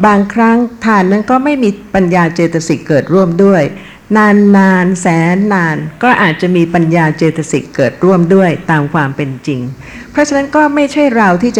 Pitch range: 165-210 Hz